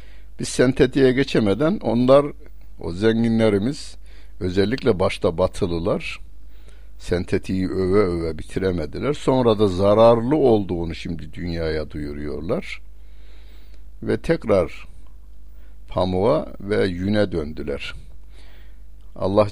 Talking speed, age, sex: 85 wpm, 60-79, male